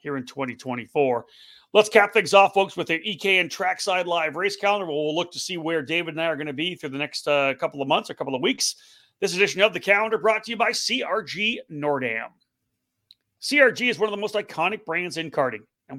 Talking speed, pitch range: 230 wpm, 150-210 Hz